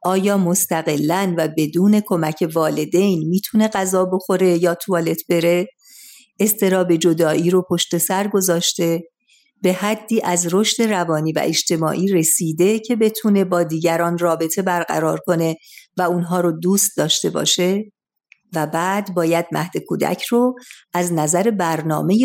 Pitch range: 170-220 Hz